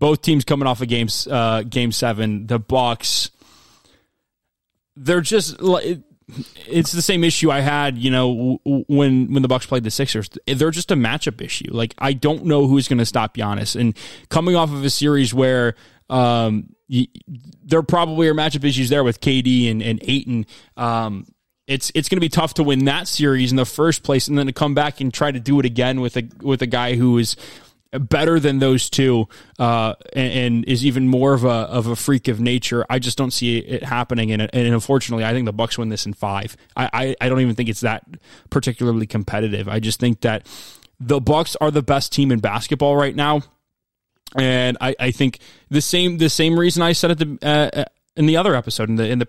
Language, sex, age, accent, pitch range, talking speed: English, male, 20-39, American, 120-145 Hz, 210 wpm